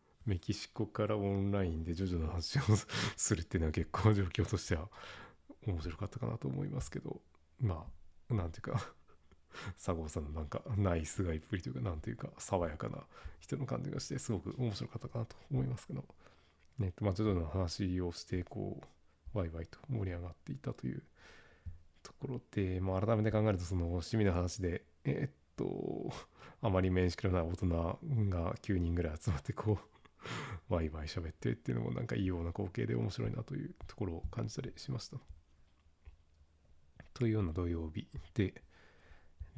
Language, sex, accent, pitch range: Japanese, male, native, 85-105 Hz